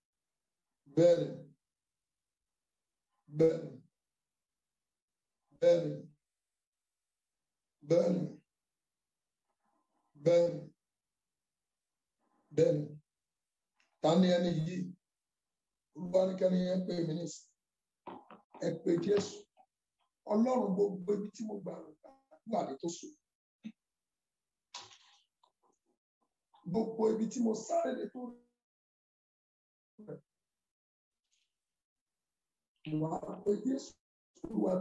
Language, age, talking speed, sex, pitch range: English, 60-79, 35 wpm, male, 165-220 Hz